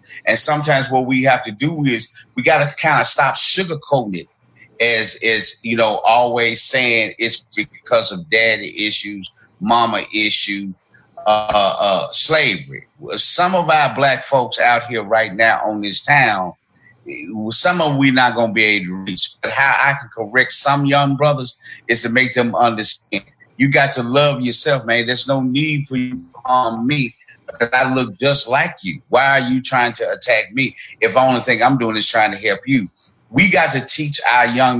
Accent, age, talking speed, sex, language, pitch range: American, 30-49, 190 wpm, male, English, 115-140 Hz